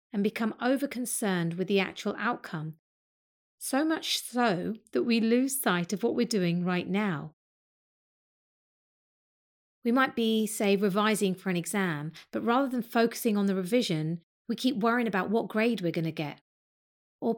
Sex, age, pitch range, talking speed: female, 30-49, 190-235 Hz, 155 wpm